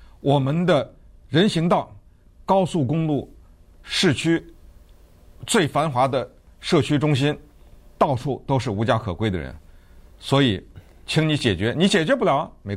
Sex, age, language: male, 50-69, Chinese